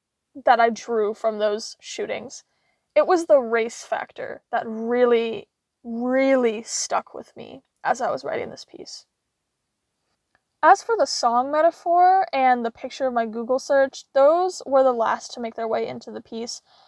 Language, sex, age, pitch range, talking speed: English, female, 10-29, 225-275 Hz, 165 wpm